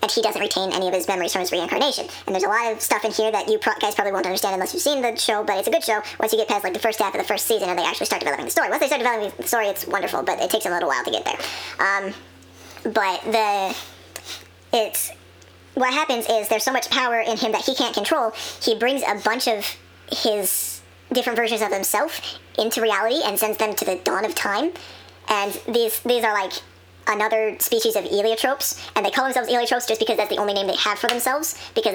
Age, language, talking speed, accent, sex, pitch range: 20-39, English, 250 wpm, American, male, 195-230 Hz